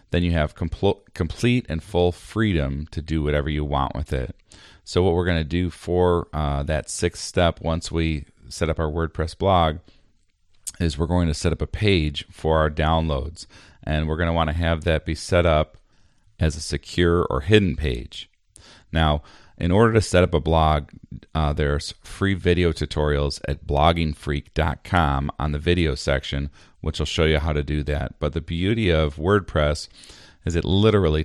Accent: American